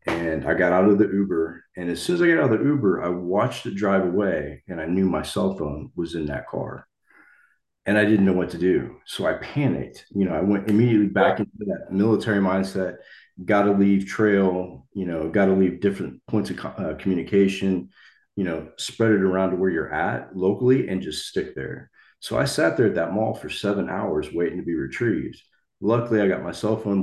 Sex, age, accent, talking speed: male, 40-59, American, 220 wpm